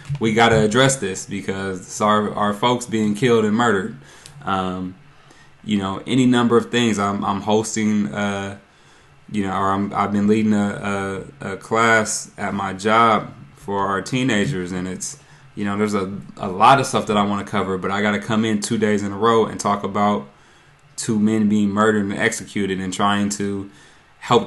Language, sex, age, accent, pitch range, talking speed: English, male, 20-39, American, 100-130 Hz, 195 wpm